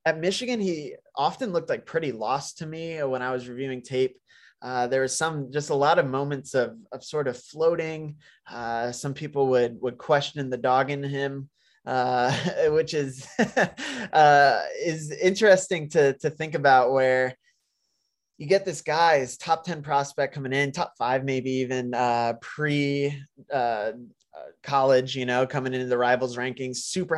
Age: 20-39